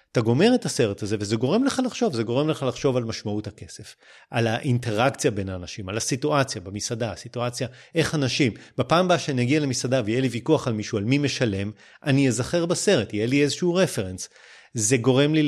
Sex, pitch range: male, 115-160 Hz